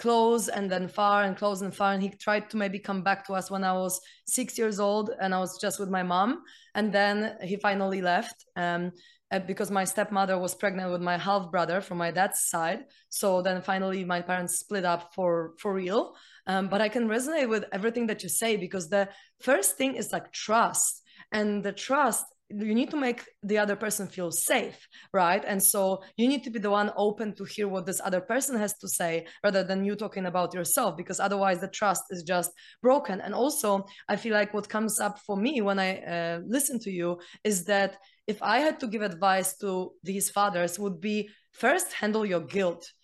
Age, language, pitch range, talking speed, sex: 20-39, English, 190-230 Hz, 215 wpm, female